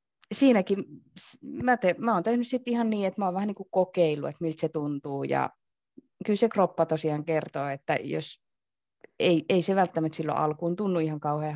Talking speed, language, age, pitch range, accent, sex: 185 wpm, Finnish, 20-39, 160-205 Hz, native, female